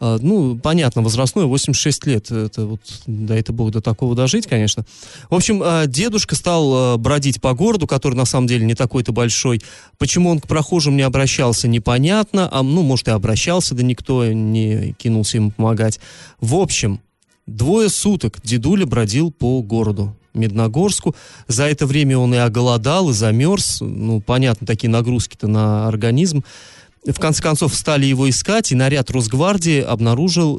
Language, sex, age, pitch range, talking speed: Russian, male, 20-39, 115-150 Hz, 155 wpm